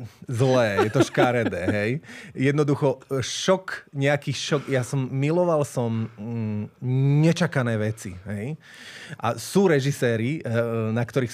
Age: 30-49